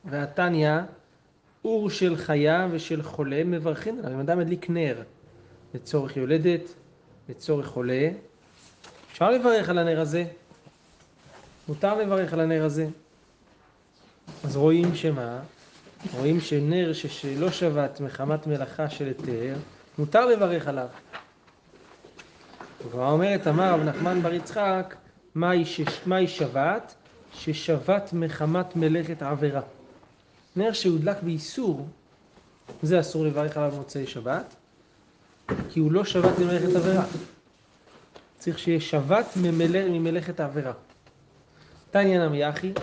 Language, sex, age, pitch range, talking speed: Hebrew, male, 30-49, 150-180 Hz, 105 wpm